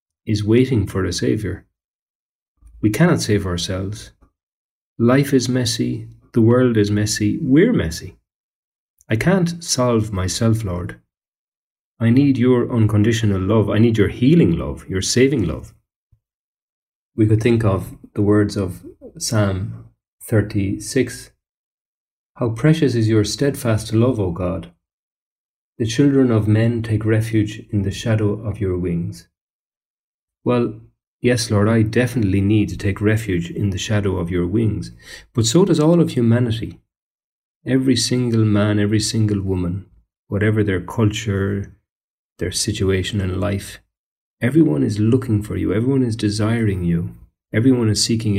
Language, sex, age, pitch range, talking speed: English, male, 40-59, 95-115 Hz, 140 wpm